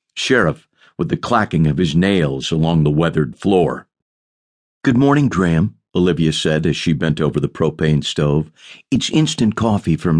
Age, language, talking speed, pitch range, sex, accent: 50-69, English, 160 wpm, 80-125 Hz, male, American